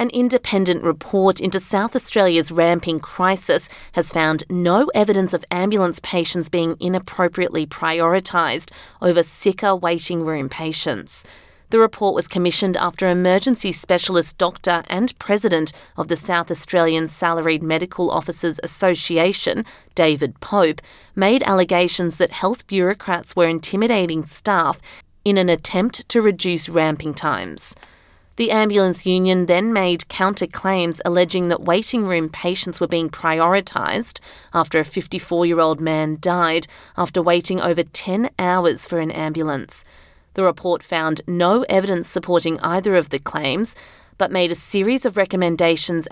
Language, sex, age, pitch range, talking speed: English, female, 30-49, 165-190 Hz, 135 wpm